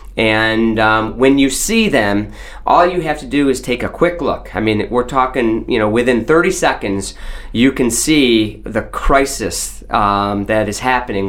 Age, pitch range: 30-49, 110-130 Hz